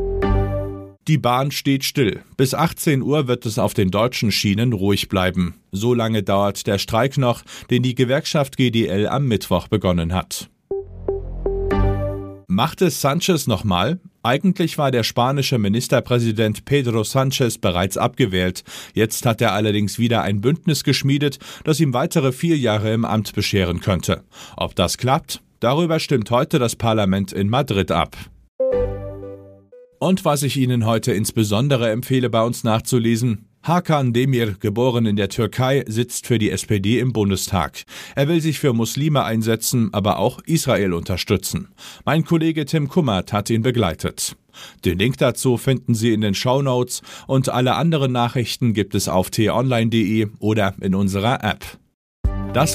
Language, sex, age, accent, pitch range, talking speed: German, male, 40-59, German, 100-135 Hz, 150 wpm